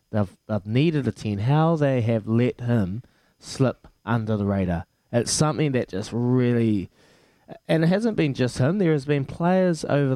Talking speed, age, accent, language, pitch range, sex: 170 wpm, 20-39, Australian, English, 110-135 Hz, male